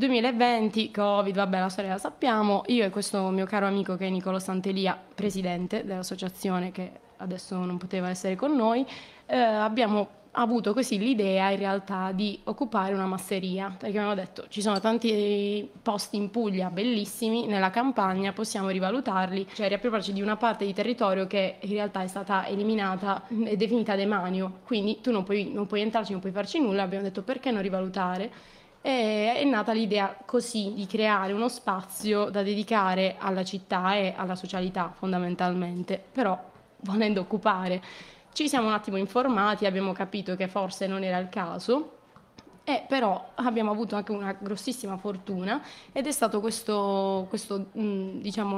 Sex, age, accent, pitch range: female, 20-39, native, 190-225 Hz